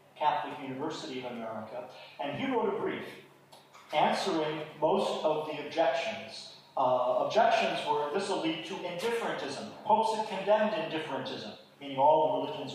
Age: 40-59